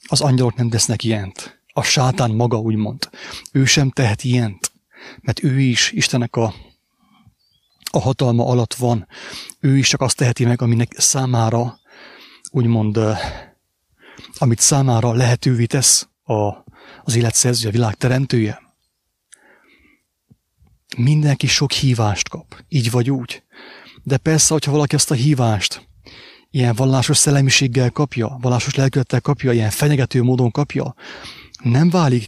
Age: 30-49